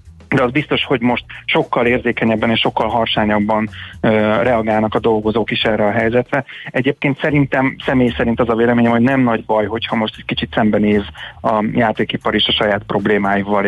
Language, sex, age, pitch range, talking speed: Hungarian, male, 30-49, 110-135 Hz, 175 wpm